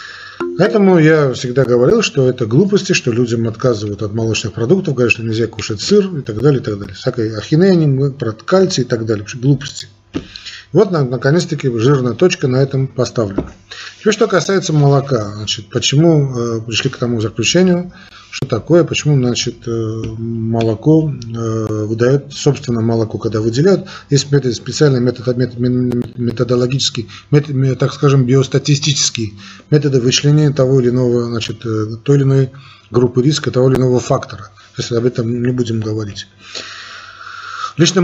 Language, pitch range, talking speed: Russian, 115-140 Hz, 135 wpm